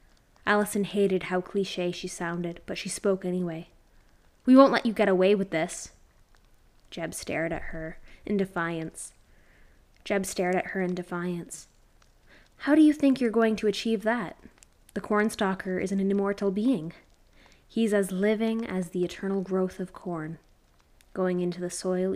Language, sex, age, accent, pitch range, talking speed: English, female, 10-29, American, 175-210 Hz, 160 wpm